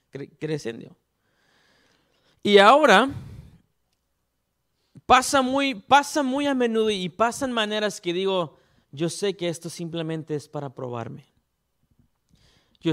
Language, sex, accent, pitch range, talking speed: English, male, Mexican, 160-215 Hz, 105 wpm